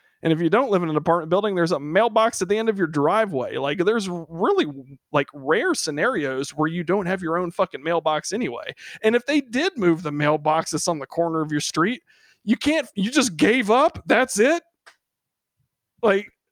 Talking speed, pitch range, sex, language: 205 wpm, 155-235 Hz, male, English